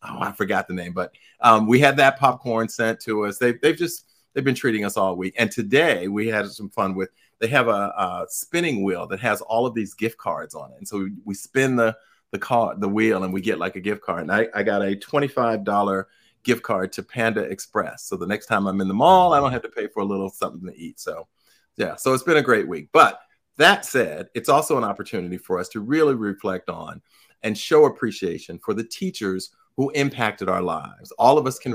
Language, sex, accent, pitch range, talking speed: English, male, American, 95-130 Hz, 240 wpm